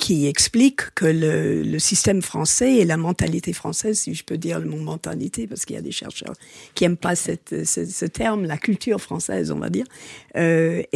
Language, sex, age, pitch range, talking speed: French, female, 50-69, 160-210 Hz, 210 wpm